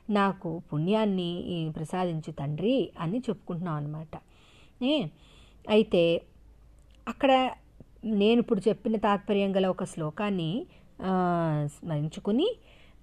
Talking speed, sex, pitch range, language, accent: 80 wpm, female, 160-230 Hz, Telugu, native